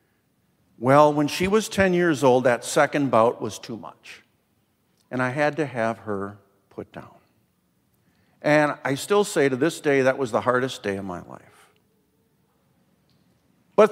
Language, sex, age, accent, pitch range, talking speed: English, male, 50-69, American, 125-175 Hz, 160 wpm